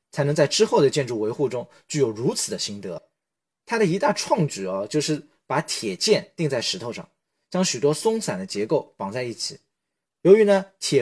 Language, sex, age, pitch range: Chinese, male, 20-39, 130-185 Hz